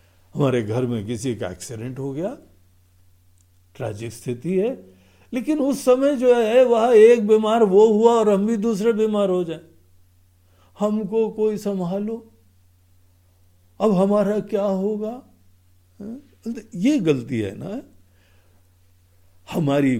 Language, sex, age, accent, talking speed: Hindi, male, 60-79, native, 125 wpm